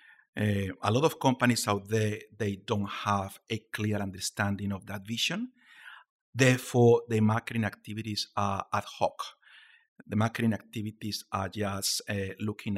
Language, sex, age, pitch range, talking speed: English, male, 50-69, 105-125 Hz, 140 wpm